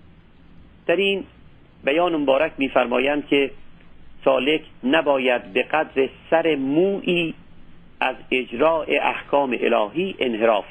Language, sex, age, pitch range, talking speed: Persian, male, 50-69, 120-155 Hz, 90 wpm